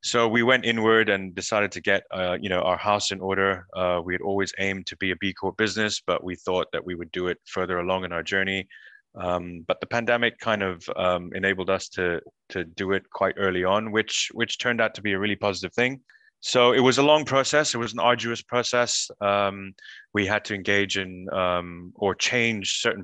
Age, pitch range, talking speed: 20-39, 90-110 Hz, 225 wpm